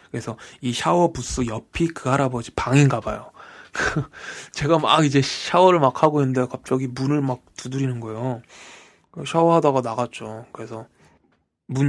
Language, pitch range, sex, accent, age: Korean, 120-150 Hz, male, native, 20-39